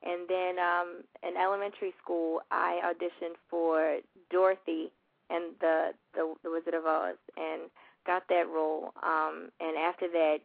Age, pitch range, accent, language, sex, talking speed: 20-39, 160-185 Hz, American, English, female, 145 wpm